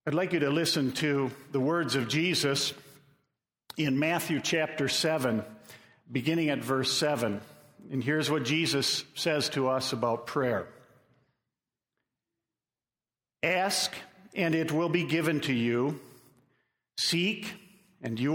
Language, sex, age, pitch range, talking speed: English, male, 50-69, 145-180 Hz, 125 wpm